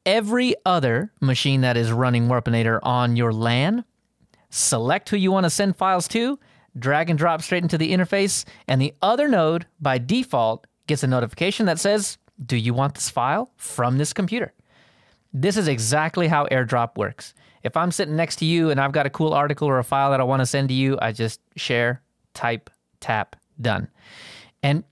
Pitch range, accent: 125-170 Hz, American